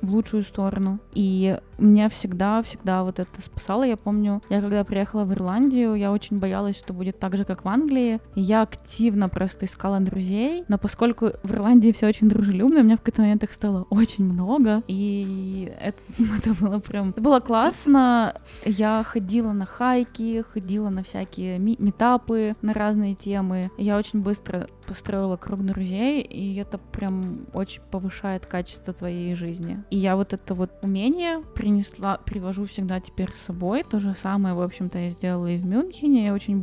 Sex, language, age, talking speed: female, Russian, 20-39, 170 wpm